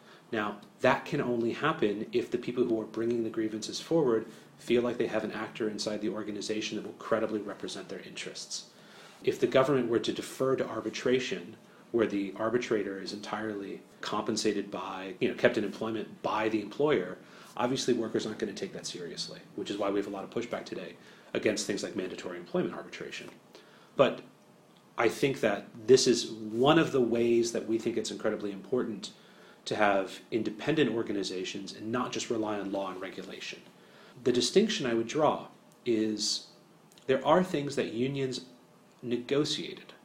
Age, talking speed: 30-49, 175 wpm